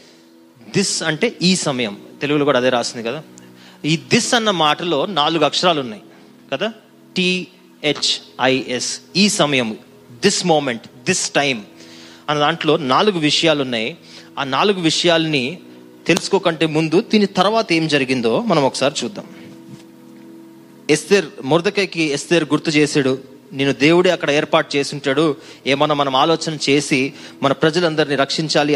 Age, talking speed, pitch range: 30-49, 120 wpm, 135-170 Hz